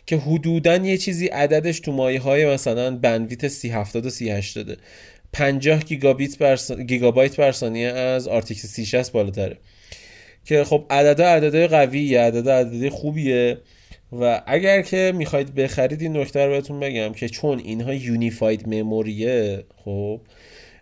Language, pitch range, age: Persian, 110-140 Hz, 30-49